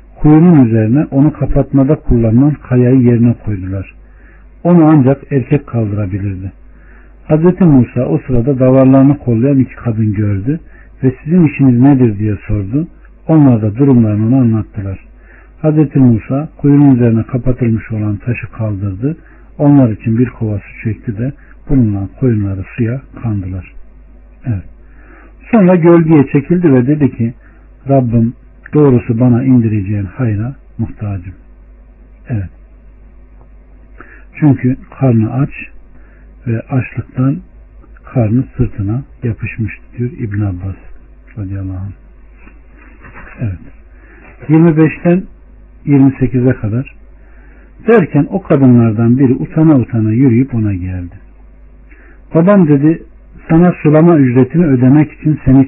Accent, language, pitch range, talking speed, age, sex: native, Turkish, 110-140 Hz, 105 wpm, 60-79, male